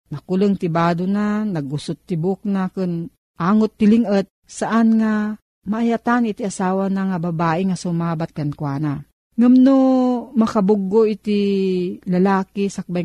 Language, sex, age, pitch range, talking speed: Filipino, female, 40-59, 175-220 Hz, 130 wpm